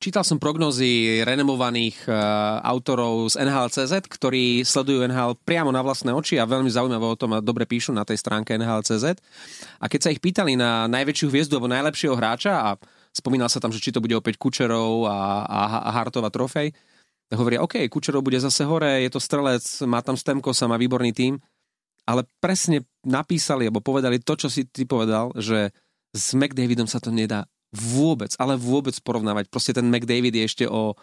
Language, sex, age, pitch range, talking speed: Slovak, male, 30-49, 120-165 Hz, 185 wpm